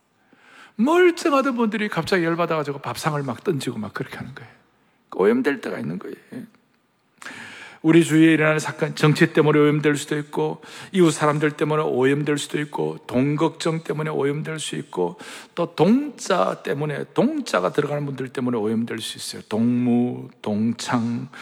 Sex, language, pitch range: male, Korean, 130-210 Hz